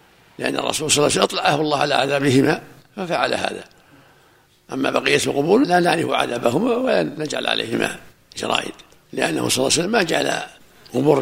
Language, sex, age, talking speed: Arabic, male, 60-79, 160 wpm